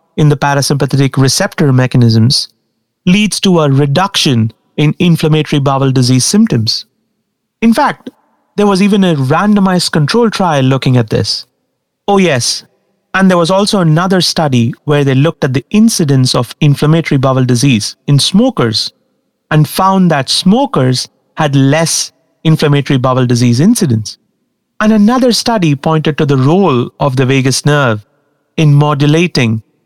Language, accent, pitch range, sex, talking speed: English, Indian, 130-185 Hz, male, 140 wpm